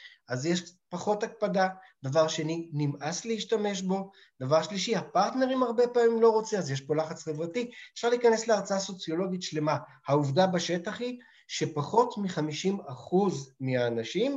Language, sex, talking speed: Hebrew, male, 135 wpm